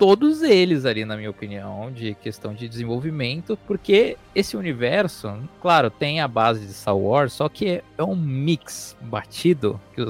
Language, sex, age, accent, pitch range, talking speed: Portuguese, male, 20-39, Brazilian, 110-155 Hz, 170 wpm